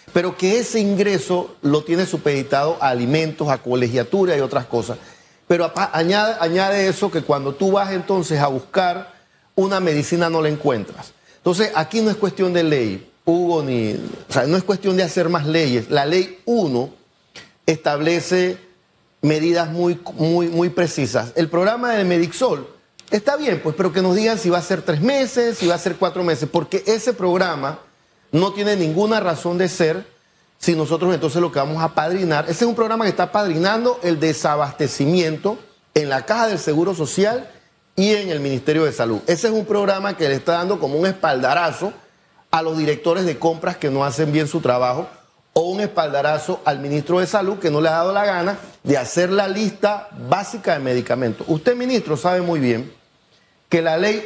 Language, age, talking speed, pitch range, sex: Spanish, 40-59, 185 wpm, 155-195 Hz, male